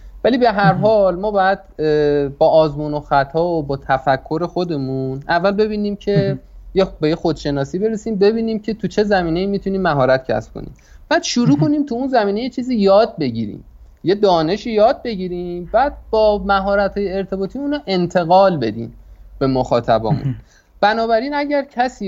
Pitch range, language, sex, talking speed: 135-195 Hz, Persian, male, 155 wpm